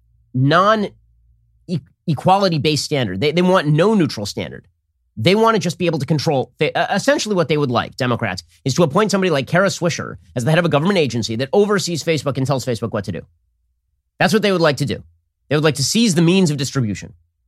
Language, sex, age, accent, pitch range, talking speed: English, male, 30-49, American, 115-175 Hz, 210 wpm